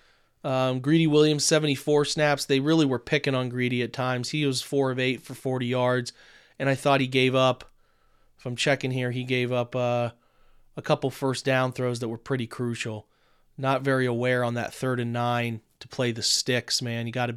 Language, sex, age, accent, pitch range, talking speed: English, male, 30-49, American, 125-145 Hz, 205 wpm